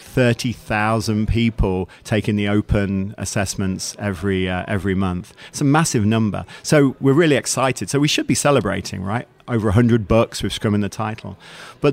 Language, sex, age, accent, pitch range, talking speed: English, male, 40-59, British, 100-120 Hz, 165 wpm